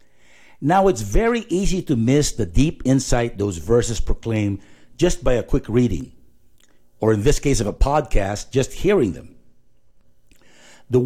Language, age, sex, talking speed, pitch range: English, 60-79, male, 150 wpm, 100-140 Hz